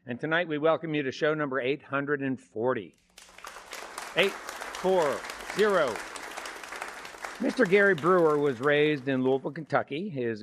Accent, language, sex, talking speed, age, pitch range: American, English, male, 120 wpm, 60-79, 120-155 Hz